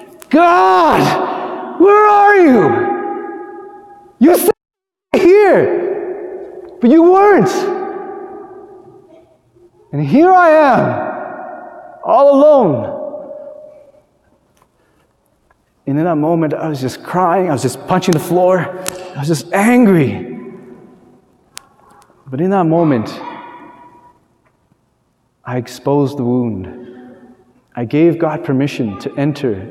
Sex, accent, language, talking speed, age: male, American, English, 95 wpm, 30-49